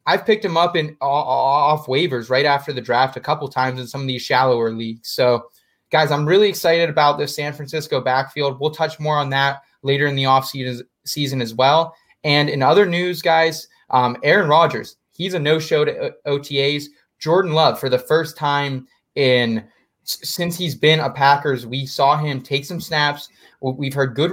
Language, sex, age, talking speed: English, male, 20-39, 190 wpm